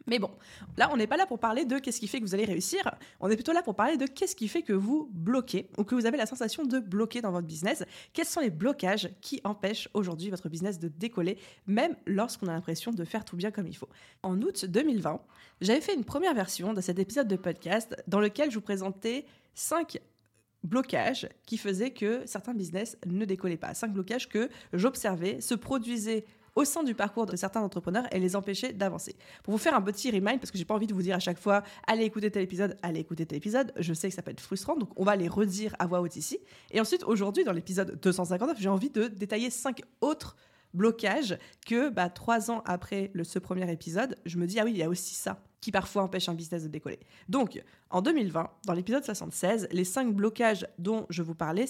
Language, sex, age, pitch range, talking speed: French, female, 20-39, 185-235 Hz, 240 wpm